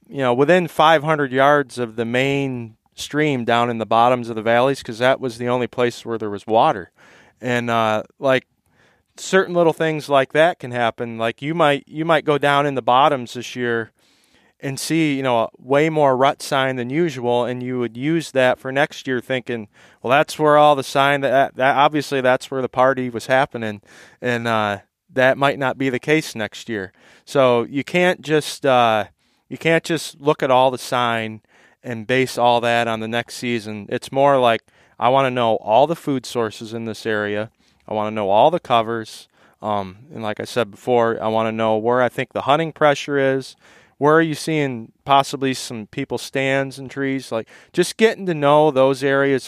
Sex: male